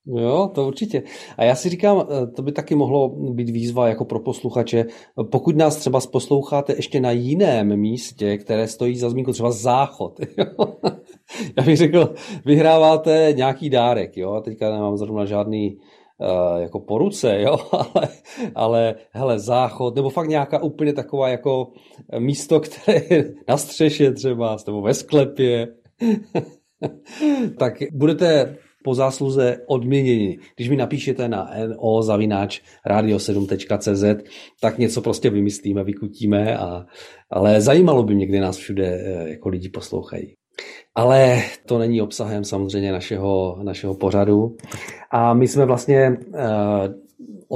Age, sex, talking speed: 40-59, male, 135 wpm